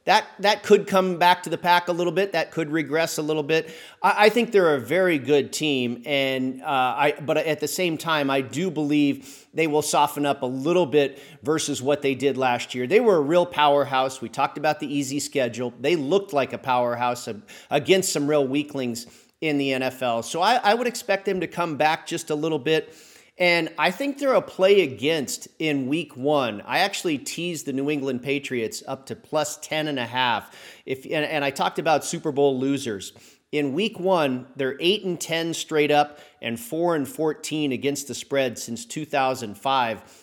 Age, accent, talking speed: 40-59, American, 200 wpm